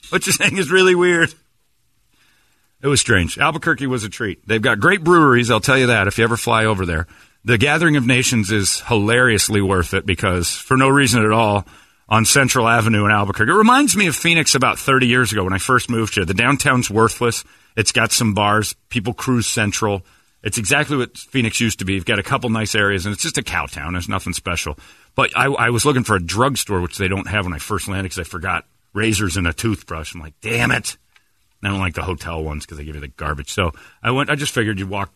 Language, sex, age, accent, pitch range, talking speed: English, male, 40-59, American, 90-120 Hz, 240 wpm